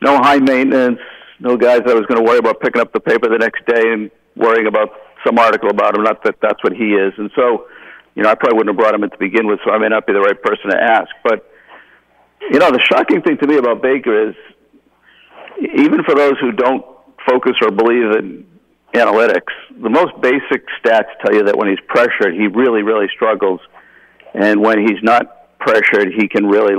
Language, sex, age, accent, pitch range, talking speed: English, male, 50-69, American, 110-145 Hz, 215 wpm